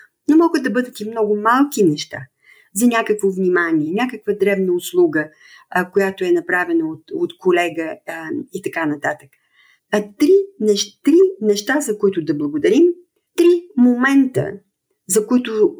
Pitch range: 180-285 Hz